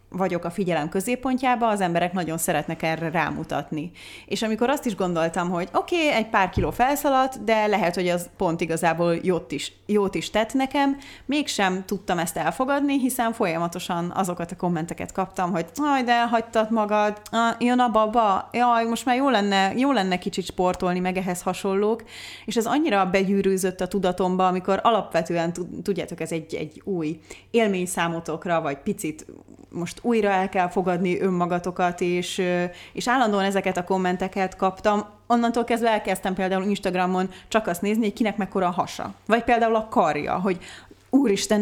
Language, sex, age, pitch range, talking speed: Hungarian, female, 30-49, 175-230 Hz, 160 wpm